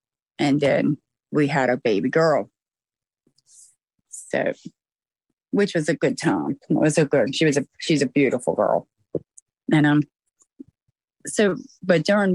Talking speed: 145 wpm